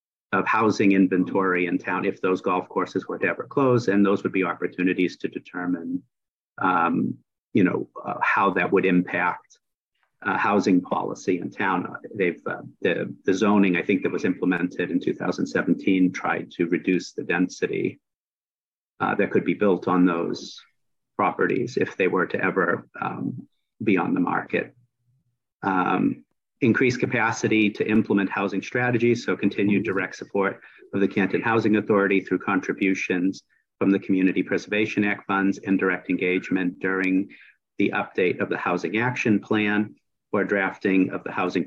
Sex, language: male, English